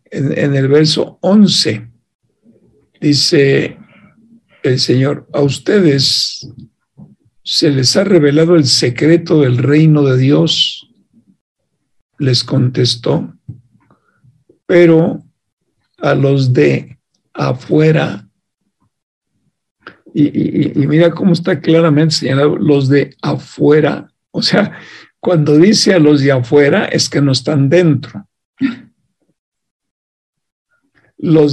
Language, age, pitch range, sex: Spanish, 60-79, 140-175 Hz, male